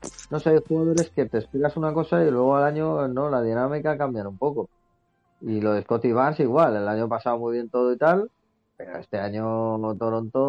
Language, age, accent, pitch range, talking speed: Spanish, 30-49, Spanish, 105-130 Hz, 215 wpm